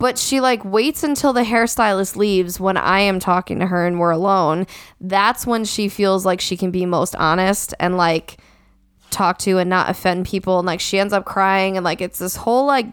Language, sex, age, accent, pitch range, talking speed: English, female, 10-29, American, 180-210 Hz, 220 wpm